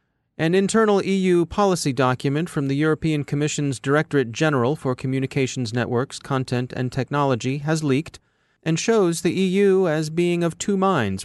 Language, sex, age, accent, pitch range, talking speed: English, male, 30-49, American, 125-160 Hz, 150 wpm